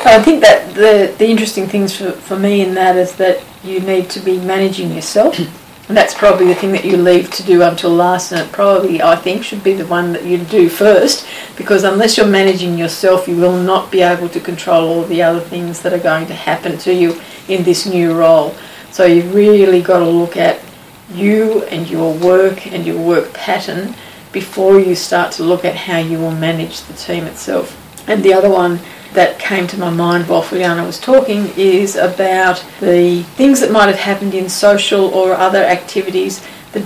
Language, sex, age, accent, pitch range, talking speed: English, female, 40-59, Australian, 175-195 Hz, 205 wpm